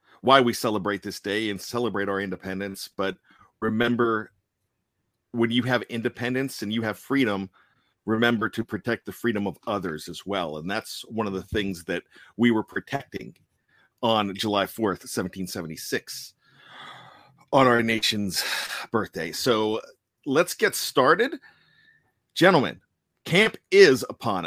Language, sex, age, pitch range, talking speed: English, male, 40-59, 110-140 Hz, 130 wpm